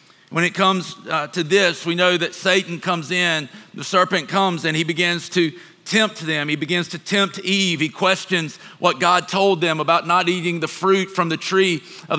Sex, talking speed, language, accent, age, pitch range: male, 200 wpm, English, American, 40-59, 165-195 Hz